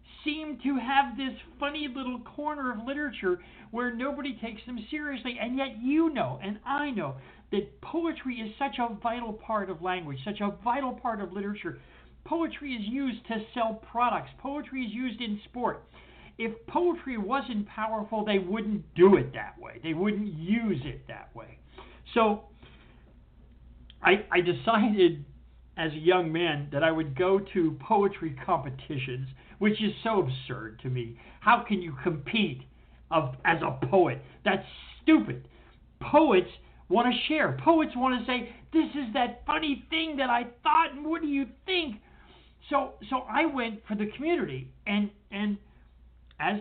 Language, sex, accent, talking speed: English, male, American, 160 wpm